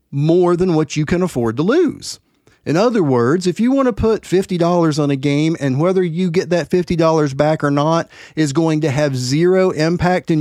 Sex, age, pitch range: male, 40-59, 145-185 Hz